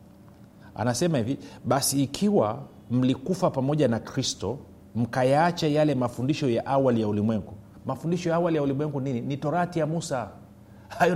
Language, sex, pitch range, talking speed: Swahili, male, 100-140 Hz, 140 wpm